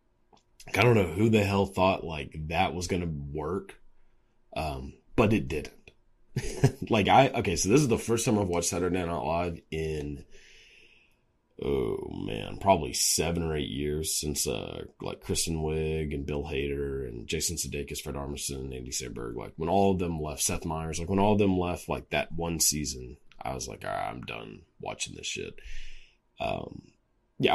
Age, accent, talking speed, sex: 30-49, American, 185 wpm, male